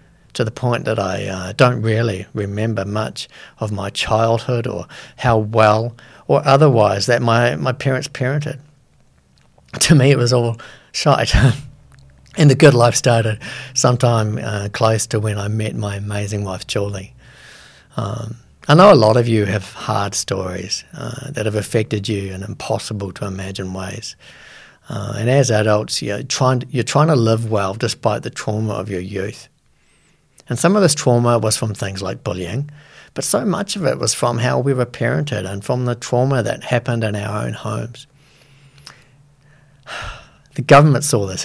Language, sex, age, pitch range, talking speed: English, male, 50-69, 105-135 Hz, 170 wpm